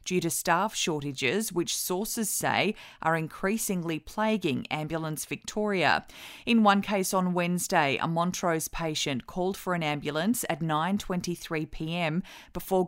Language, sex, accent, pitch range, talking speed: English, female, Australian, 165-205 Hz, 125 wpm